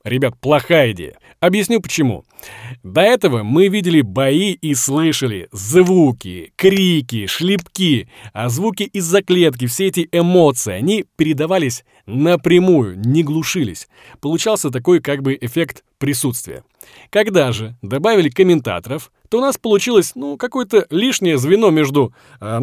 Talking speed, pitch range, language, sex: 125 wpm, 135-195 Hz, Russian, male